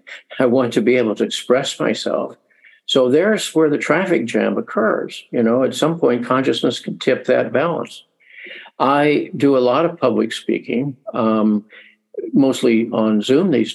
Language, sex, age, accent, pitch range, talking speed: English, male, 50-69, American, 120-160 Hz, 160 wpm